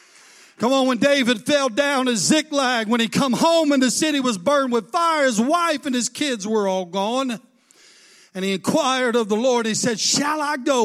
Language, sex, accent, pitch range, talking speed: English, male, American, 210-280 Hz, 210 wpm